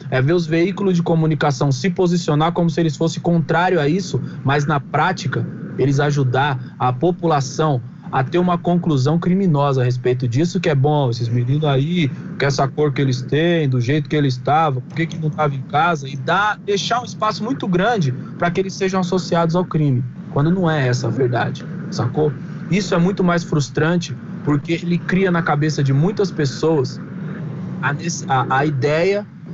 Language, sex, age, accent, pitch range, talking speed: Portuguese, male, 20-39, Brazilian, 140-175 Hz, 185 wpm